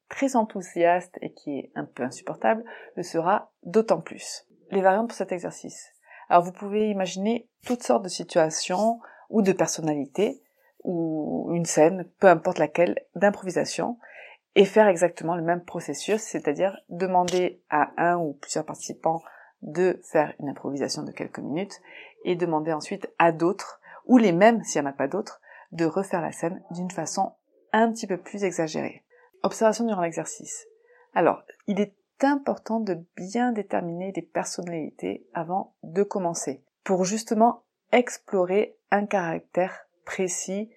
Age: 30-49